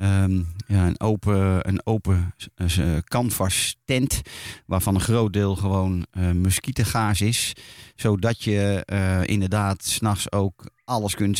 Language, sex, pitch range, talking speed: Dutch, male, 95-120 Hz, 130 wpm